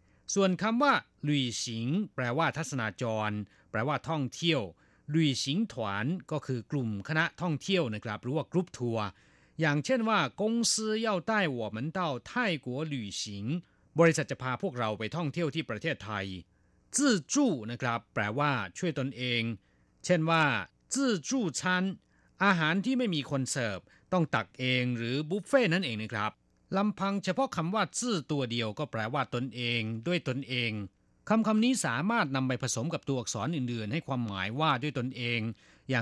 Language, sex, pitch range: Thai, male, 115-180 Hz